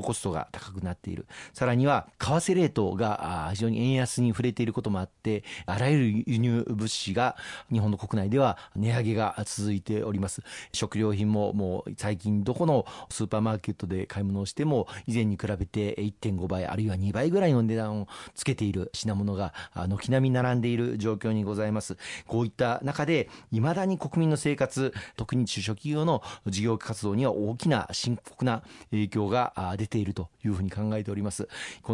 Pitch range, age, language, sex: 105-125 Hz, 40-59, Japanese, male